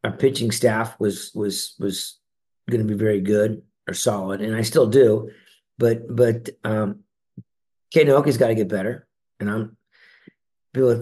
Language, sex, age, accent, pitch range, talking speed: English, male, 50-69, American, 100-120 Hz, 150 wpm